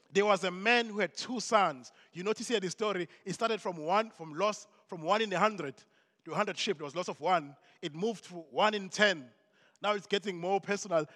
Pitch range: 160-205 Hz